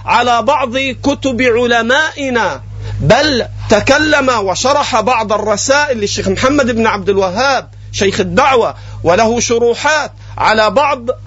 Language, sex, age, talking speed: Arabic, male, 40-59, 105 wpm